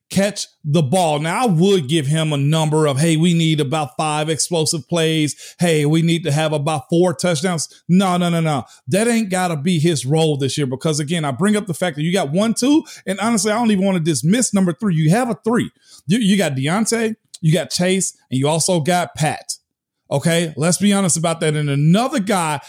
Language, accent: English, American